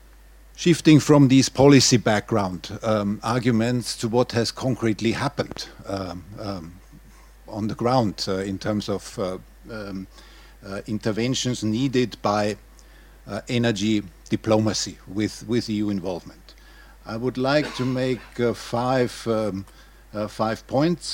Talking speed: 130 wpm